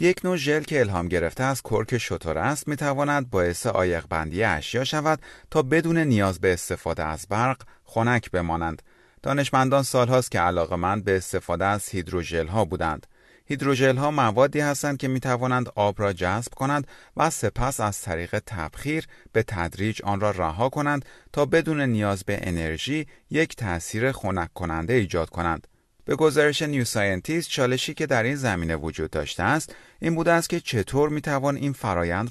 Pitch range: 90-140 Hz